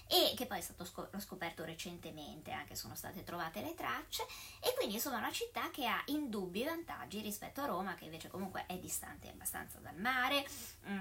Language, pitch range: Italian, 170-255 Hz